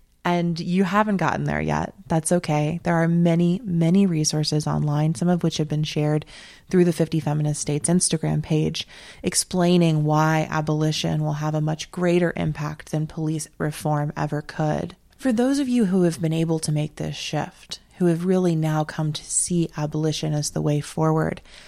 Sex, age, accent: female, 20-39, American